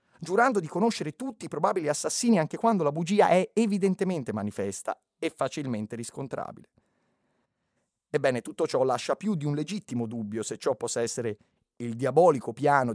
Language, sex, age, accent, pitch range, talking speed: Italian, male, 30-49, native, 110-155 Hz, 155 wpm